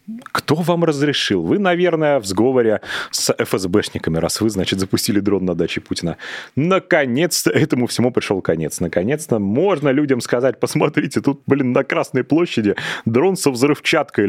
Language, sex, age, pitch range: Russian, male, 30-49, 95-140 Hz